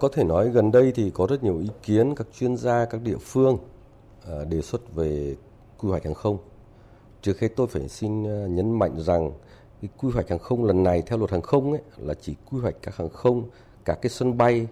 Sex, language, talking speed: male, Vietnamese, 225 wpm